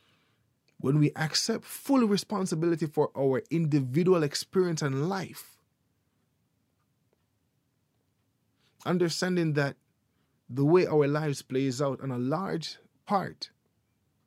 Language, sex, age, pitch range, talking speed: English, male, 20-39, 125-150 Hz, 95 wpm